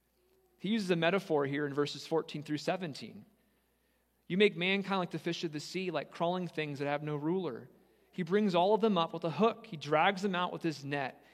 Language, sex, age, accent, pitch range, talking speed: English, male, 30-49, American, 145-190 Hz, 220 wpm